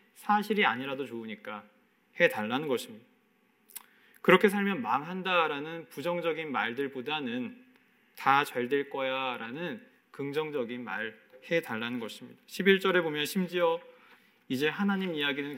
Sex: male